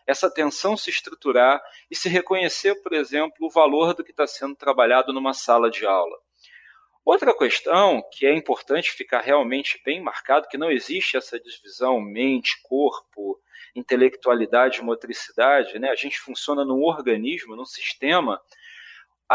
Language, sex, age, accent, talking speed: English, male, 40-59, Brazilian, 135 wpm